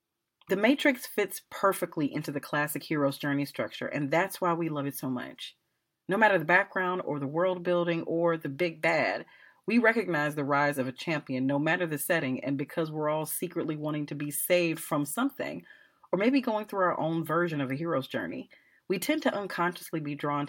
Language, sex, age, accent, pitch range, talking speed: English, female, 30-49, American, 145-185 Hz, 200 wpm